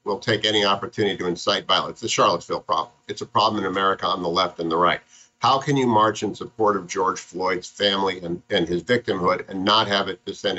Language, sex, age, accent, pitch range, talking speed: English, male, 50-69, American, 110-145 Hz, 230 wpm